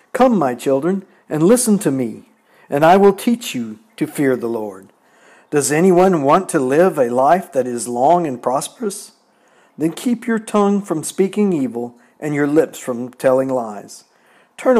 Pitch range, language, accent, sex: 135-180 Hz, English, American, male